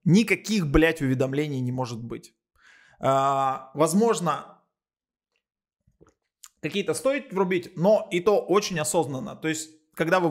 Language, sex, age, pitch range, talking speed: Russian, male, 20-39, 140-175 Hz, 110 wpm